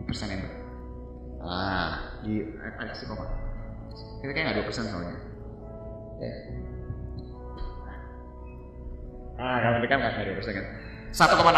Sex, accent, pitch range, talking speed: male, native, 95-135 Hz, 100 wpm